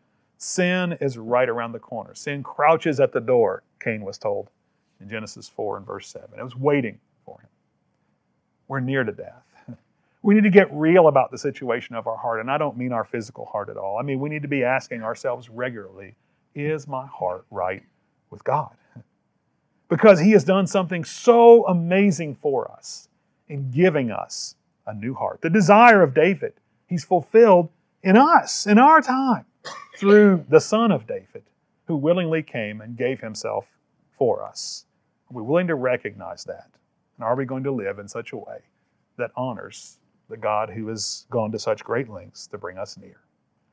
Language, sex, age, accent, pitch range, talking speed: English, male, 40-59, American, 125-185 Hz, 185 wpm